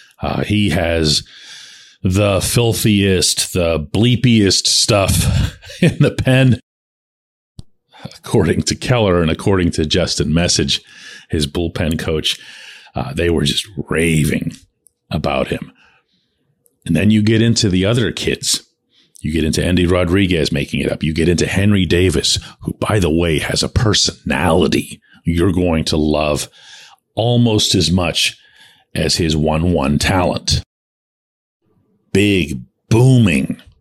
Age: 40-59